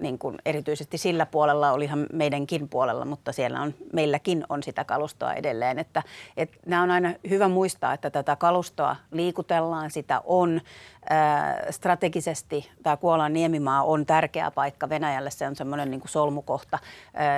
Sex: female